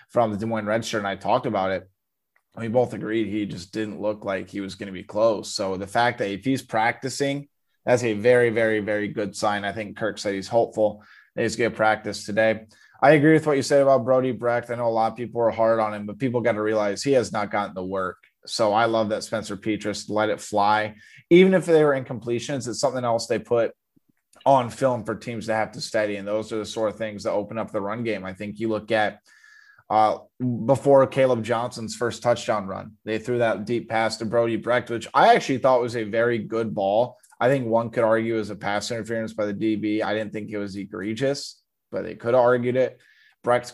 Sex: male